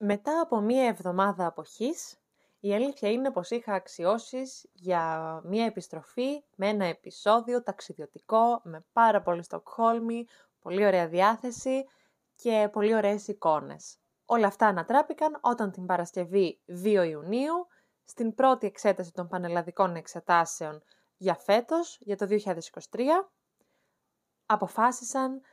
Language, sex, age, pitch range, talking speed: Greek, female, 20-39, 180-245 Hz, 115 wpm